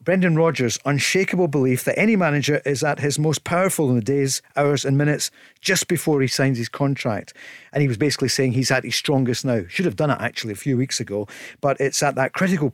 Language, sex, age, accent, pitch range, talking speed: English, male, 50-69, British, 135-190 Hz, 225 wpm